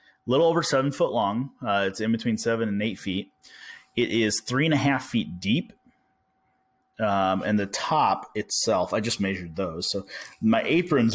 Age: 30-49